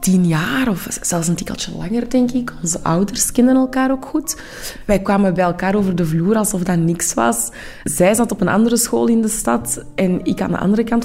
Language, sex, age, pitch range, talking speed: Dutch, female, 20-39, 175-230 Hz, 225 wpm